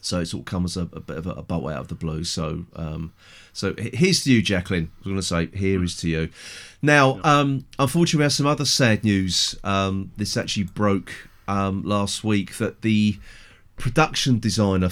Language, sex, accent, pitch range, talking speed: English, male, British, 90-115 Hz, 215 wpm